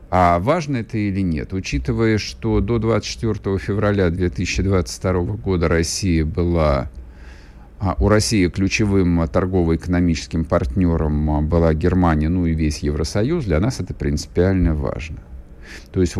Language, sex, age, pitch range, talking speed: Russian, male, 50-69, 80-110 Hz, 120 wpm